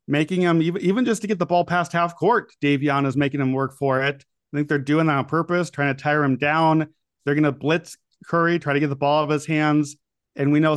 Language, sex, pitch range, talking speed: English, male, 140-165 Hz, 265 wpm